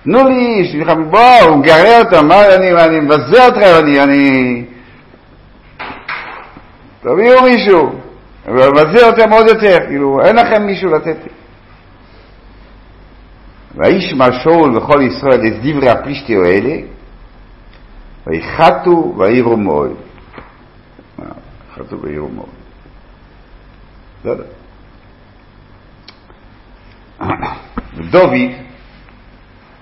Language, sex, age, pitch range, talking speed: Hebrew, male, 60-79, 95-160 Hz, 80 wpm